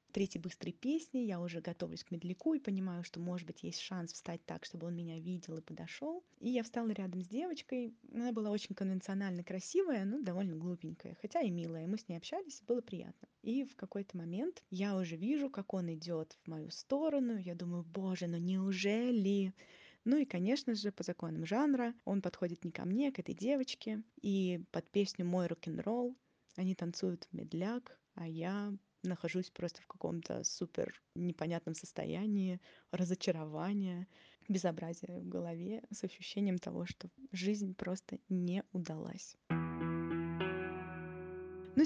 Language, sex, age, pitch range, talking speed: Russian, female, 20-39, 170-220 Hz, 160 wpm